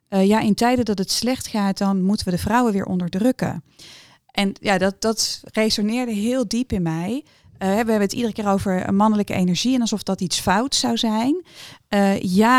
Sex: female